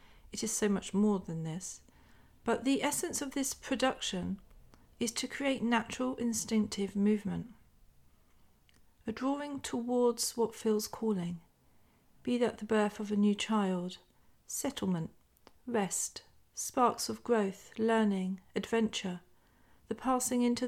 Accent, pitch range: British, 180-235 Hz